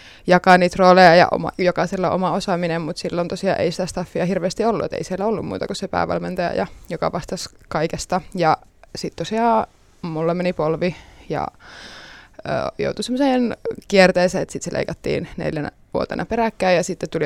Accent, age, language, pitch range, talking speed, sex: native, 20-39, Finnish, 170-195 Hz, 165 wpm, female